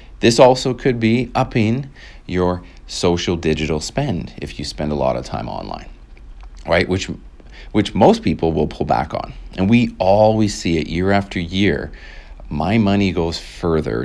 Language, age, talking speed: English, 40-59, 160 wpm